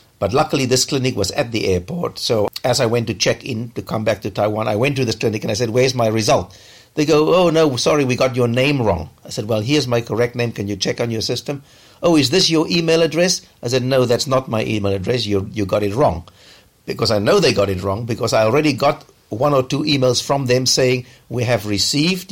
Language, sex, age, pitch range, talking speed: English, male, 60-79, 110-140 Hz, 255 wpm